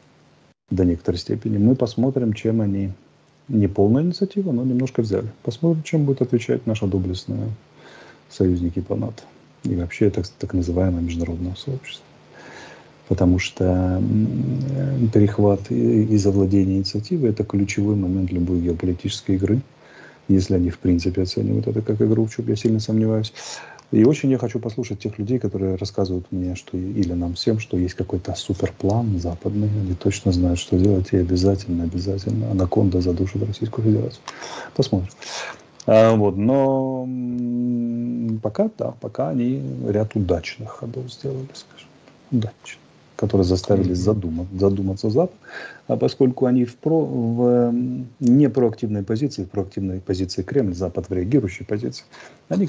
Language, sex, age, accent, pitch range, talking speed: Russian, male, 30-49, native, 95-120 Hz, 135 wpm